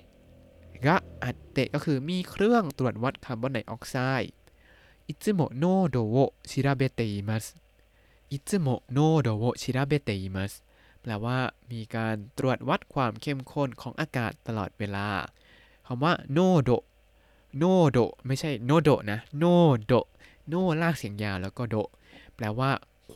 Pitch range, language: 110-155 Hz, Thai